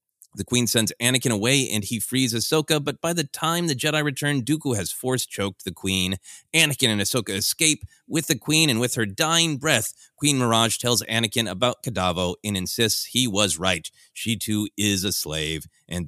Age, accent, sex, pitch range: 30-49, American, male, 100-145 Hz